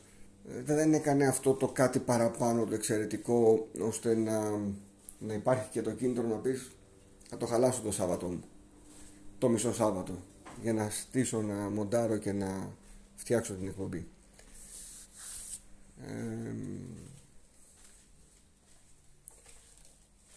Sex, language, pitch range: male, Greek, 100-120 Hz